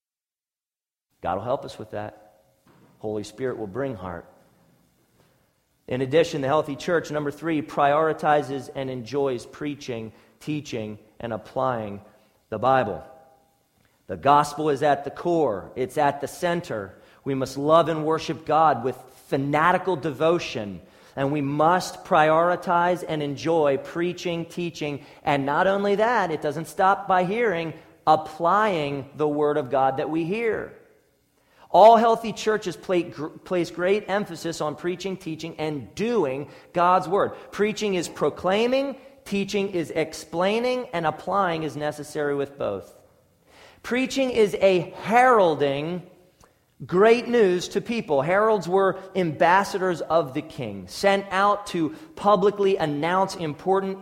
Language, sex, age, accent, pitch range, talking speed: English, male, 40-59, American, 145-195 Hz, 130 wpm